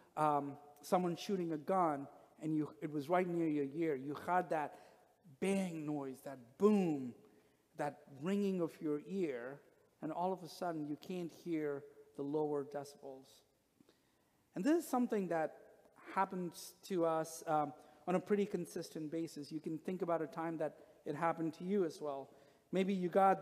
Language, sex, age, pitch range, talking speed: English, male, 50-69, 155-195 Hz, 170 wpm